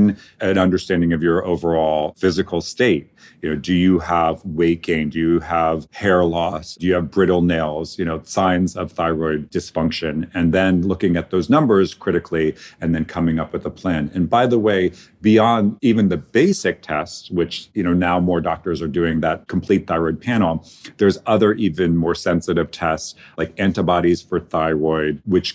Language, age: English, 40-59